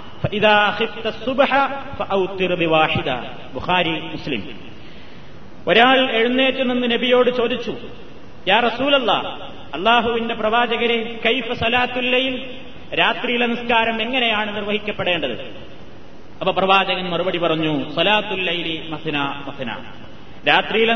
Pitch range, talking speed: 195-245 Hz, 45 wpm